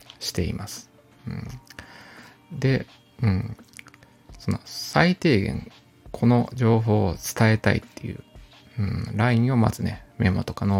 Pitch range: 100-130 Hz